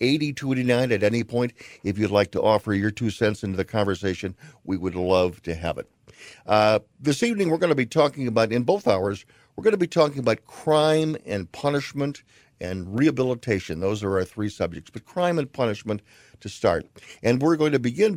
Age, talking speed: 50-69, 200 wpm